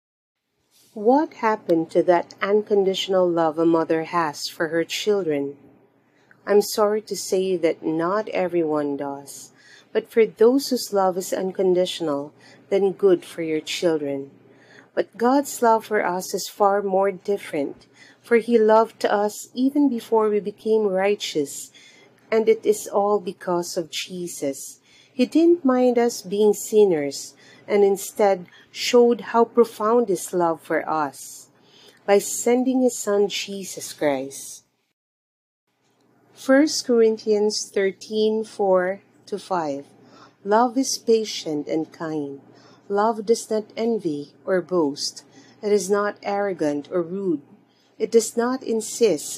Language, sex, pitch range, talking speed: English, female, 160-220 Hz, 130 wpm